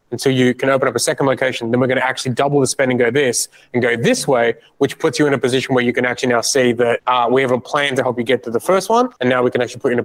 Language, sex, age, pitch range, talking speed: English, male, 20-39, 120-140 Hz, 350 wpm